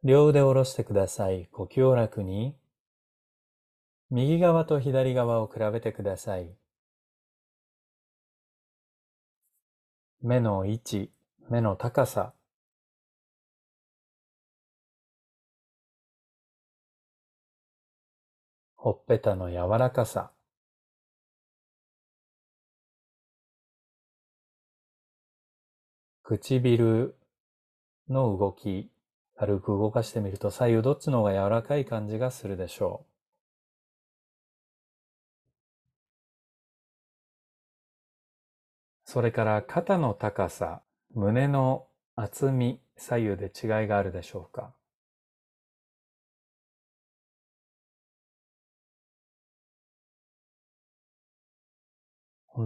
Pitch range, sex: 100-125 Hz, male